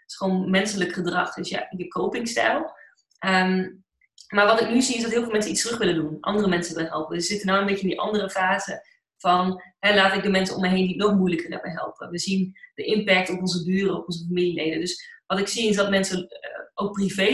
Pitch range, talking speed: 180-210 Hz, 255 wpm